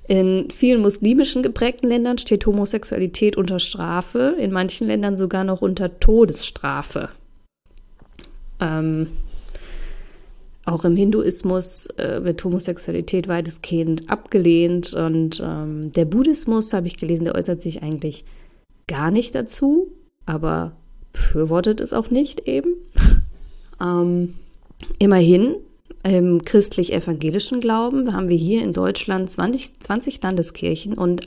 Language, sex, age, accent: German, female, 20-39, German